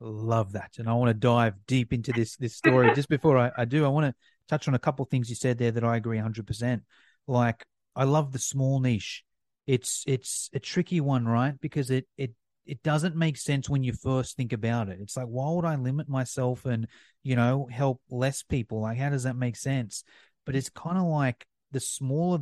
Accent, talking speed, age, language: Australian, 230 wpm, 30-49, English